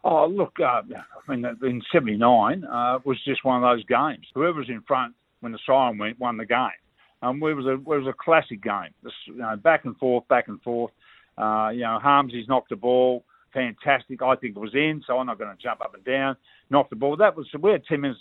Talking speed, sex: 245 wpm, male